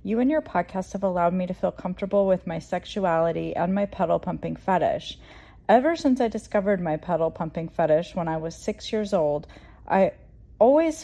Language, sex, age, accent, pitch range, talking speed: English, female, 30-49, American, 170-220 Hz, 185 wpm